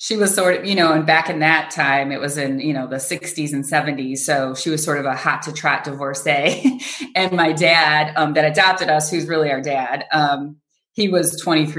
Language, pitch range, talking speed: English, 140-170 Hz, 230 wpm